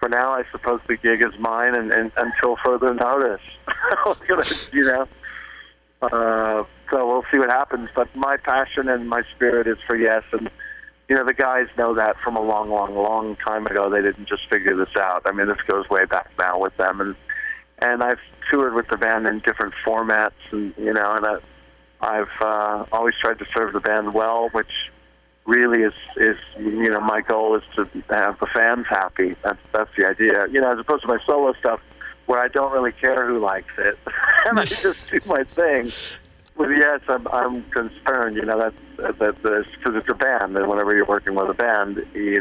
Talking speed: 200 wpm